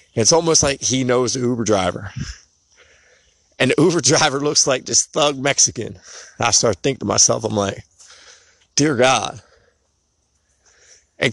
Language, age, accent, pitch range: English, 30-49, American, 100-140 Hz